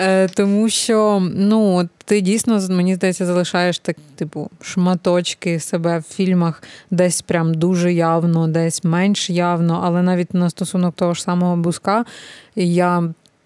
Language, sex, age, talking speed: Ukrainian, female, 20-39, 135 wpm